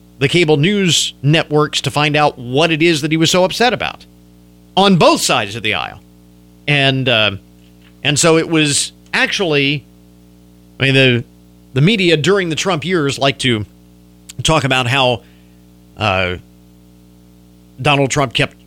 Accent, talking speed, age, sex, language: American, 150 wpm, 50-69, male, English